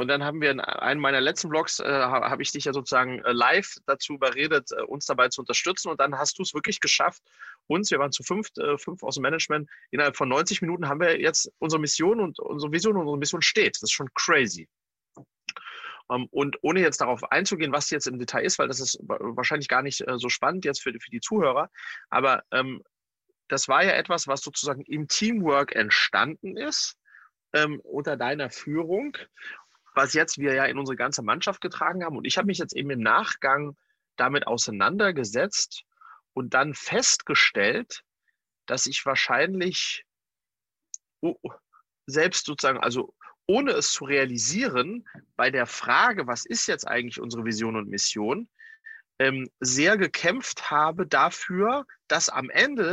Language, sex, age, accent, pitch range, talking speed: German, male, 30-49, German, 135-200 Hz, 165 wpm